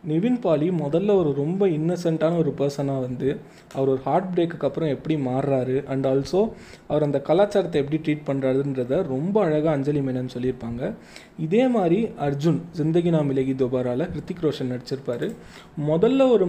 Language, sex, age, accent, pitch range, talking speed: Tamil, male, 20-39, native, 135-170 Hz, 150 wpm